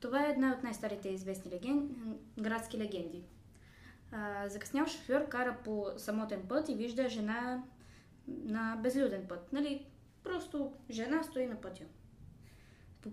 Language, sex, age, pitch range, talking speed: Bulgarian, female, 20-39, 215-265 Hz, 130 wpm